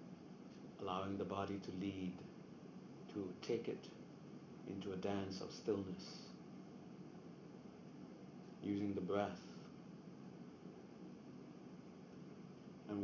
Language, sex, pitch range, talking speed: English, male, 95-110 Hz, 80 wpm